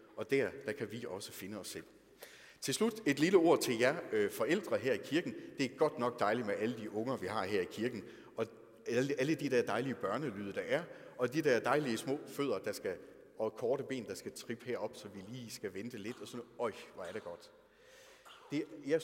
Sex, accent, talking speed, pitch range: male, native, 235 wpm, 110-175 Hz